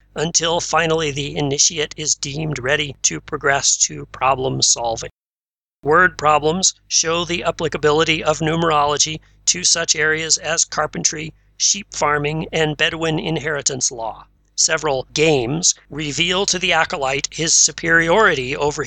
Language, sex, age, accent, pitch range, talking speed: English, male, 40-59, American, 145-170 Hz, 125 wpm